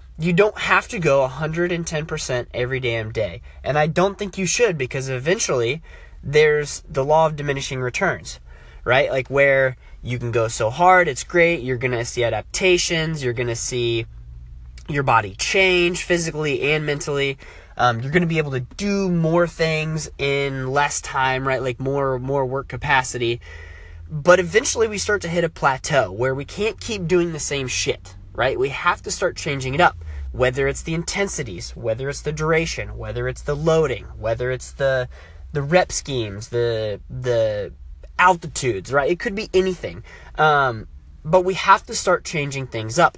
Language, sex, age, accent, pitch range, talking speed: English, male, 20-39, American, 120-170 Hz, 175 wpm